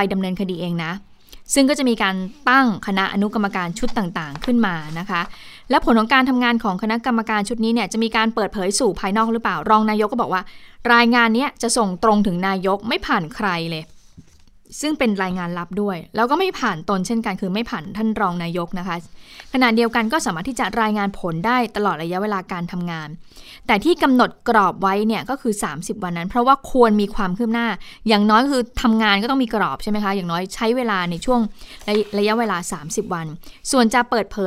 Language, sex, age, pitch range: Thai, female, 20-39, 185-235 Hz